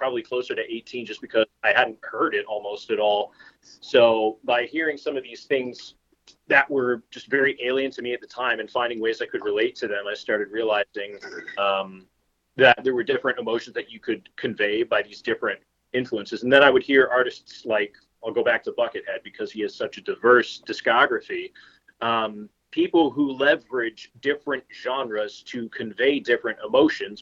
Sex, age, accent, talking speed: male, 30-49, American, 185 wpm